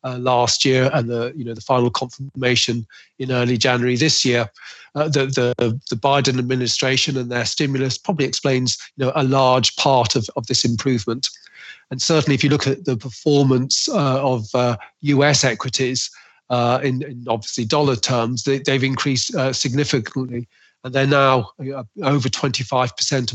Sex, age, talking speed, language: male, 40-59, 165 wpm, English